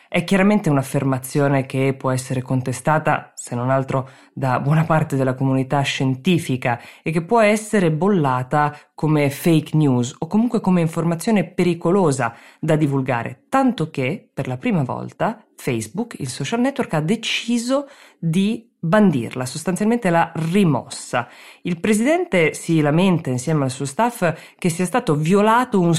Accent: native